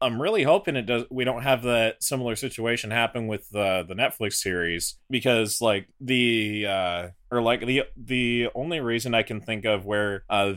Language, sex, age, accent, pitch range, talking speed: English, male, 20-39, American, 95-115 Hz, 185 wpm